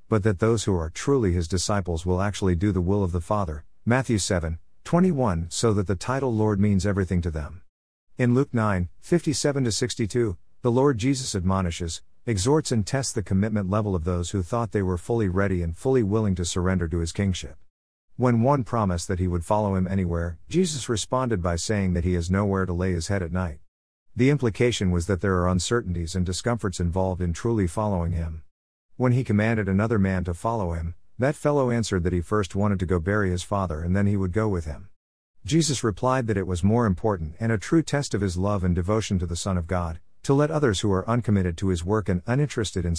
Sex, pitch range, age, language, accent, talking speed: male, 90-115 Hz, 50-69, English, American, 215 wpm